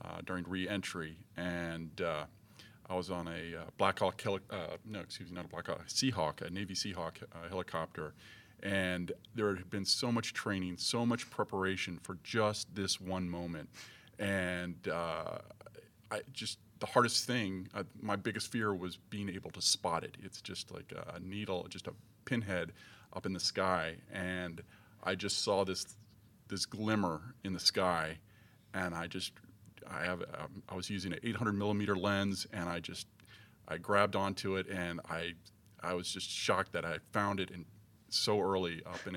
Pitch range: 90-105 Hz